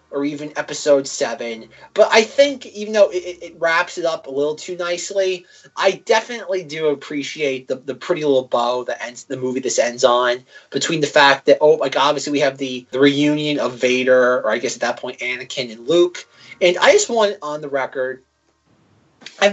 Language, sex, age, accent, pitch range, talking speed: English, male, 30-49, American, 130-180 Hz, 200 wpm